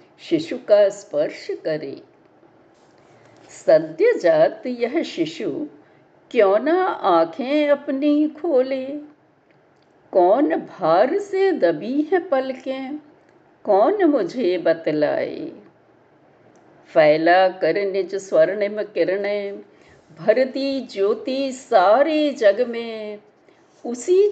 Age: 60-79